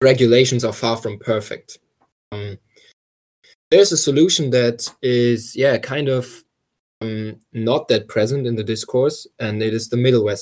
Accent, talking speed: German, 150 wpm